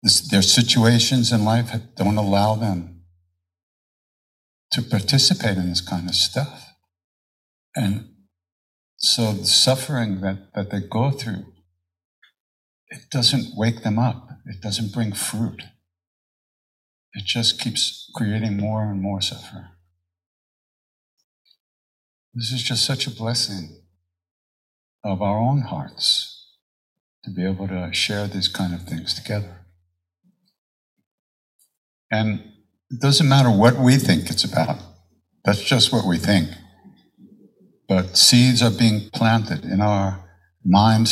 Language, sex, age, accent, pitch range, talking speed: English, male, 60-79, American, 90-120 Hz, 120 wpm